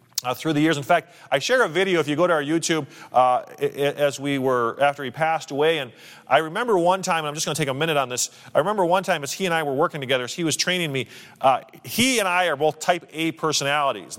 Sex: male